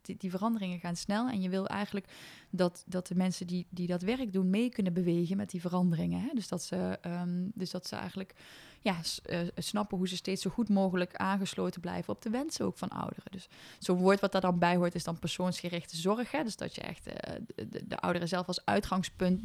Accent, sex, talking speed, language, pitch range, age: Dutch, female, 235 wpm, Dutch, 180-225 Hz, 20-39